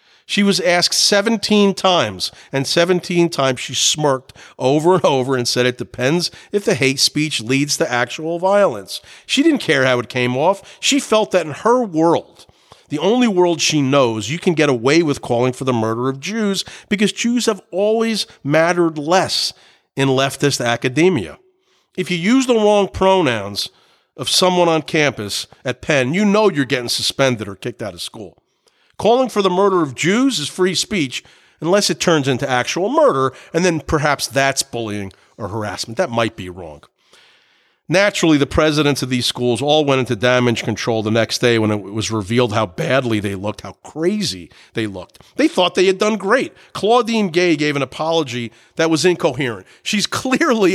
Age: 50-69